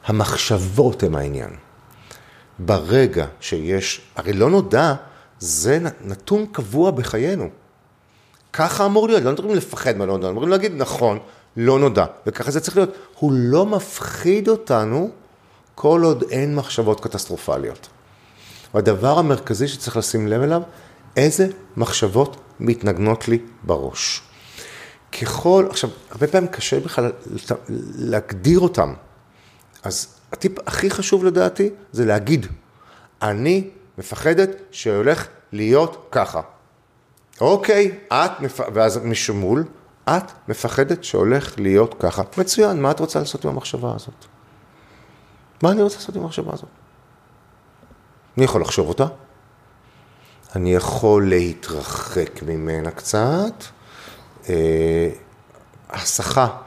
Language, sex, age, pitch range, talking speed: Hebrew, male, 40-59, 105-165 Hz, 110 wpm